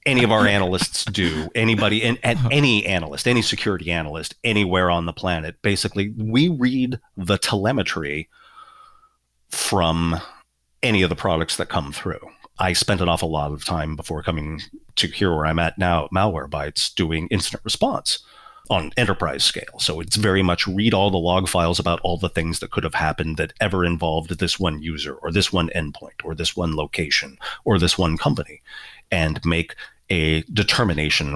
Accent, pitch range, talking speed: American, 85-110 Hz, 175 wpm